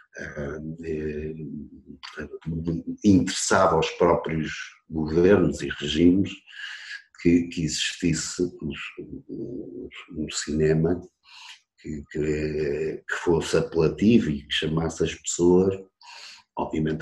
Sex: male